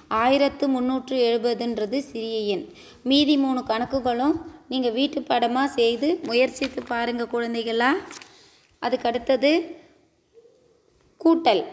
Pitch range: 225-265 Hz